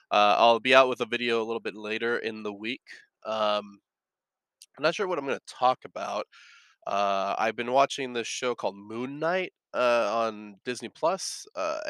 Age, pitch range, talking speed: 20-39, 105-135 Hz, 190 wpm